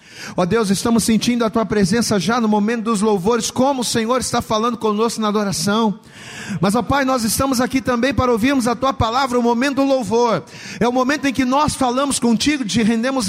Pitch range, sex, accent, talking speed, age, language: 190-240 Hz, male, Brazilian, 215 wpm, 40-59, Portuguese